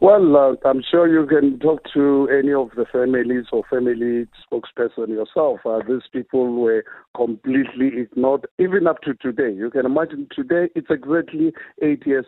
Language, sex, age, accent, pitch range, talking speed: English, male, 50-69, South African, 120-145 Hz, 170 wpm